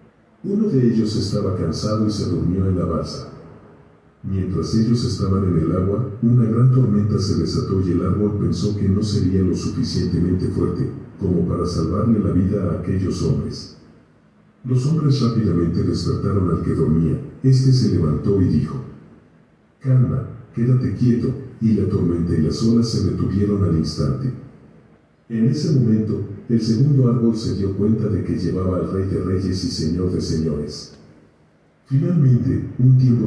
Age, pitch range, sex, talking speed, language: 50-69, 90-115 Hz, male, 160 wpm, Spanish